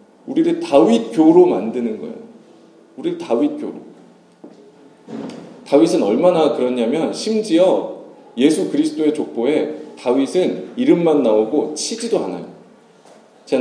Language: English